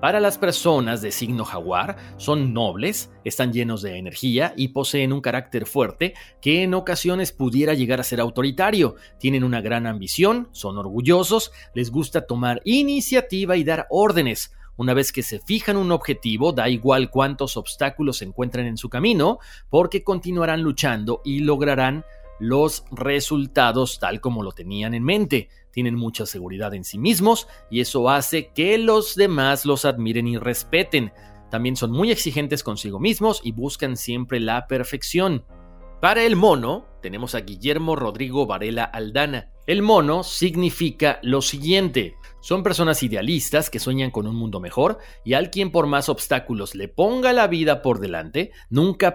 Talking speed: 160 wpm